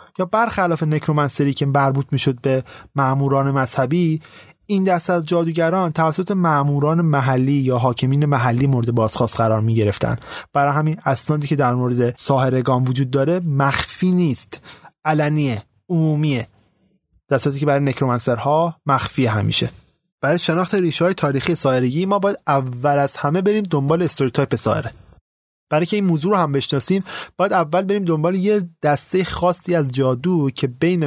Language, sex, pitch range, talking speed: Persian, male, 130-175 Hz, 145 wpm